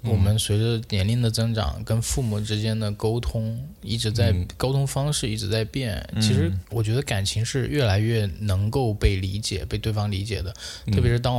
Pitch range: 100-120 Hz